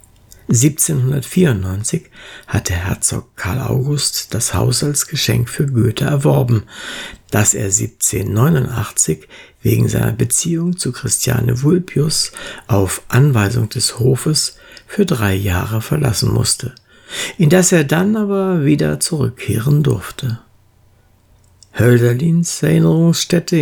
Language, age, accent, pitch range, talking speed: German, 60-79, German, 110-155 Hz, 100 wpm